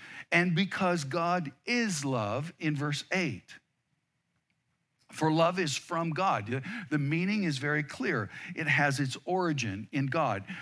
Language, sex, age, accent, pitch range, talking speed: English, male, 50-69, American, 130-175 Hz, 135 wpm